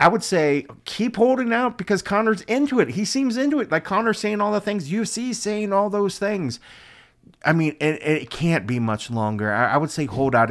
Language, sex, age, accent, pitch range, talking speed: English, male, 30-49, American, 110-130 Hz, 225 wpm